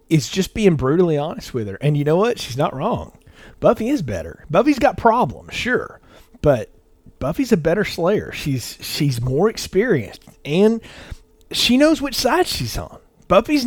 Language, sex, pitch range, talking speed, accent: English, male, 130-180 Hz, 165 wpm, American